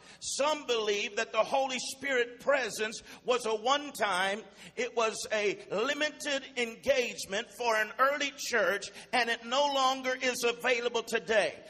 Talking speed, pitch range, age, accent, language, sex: 140 wpm, 230-280 Hz, 50-69, American, English, male